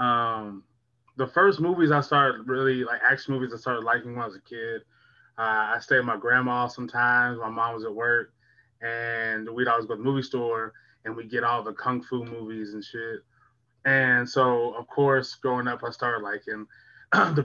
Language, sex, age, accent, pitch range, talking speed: English, male, 20-39, American, 115-130 Hz, 200 wpm